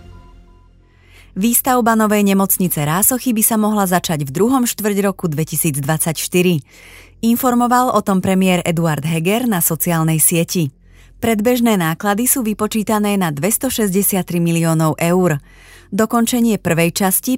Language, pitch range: Slovak, 165-220 Hz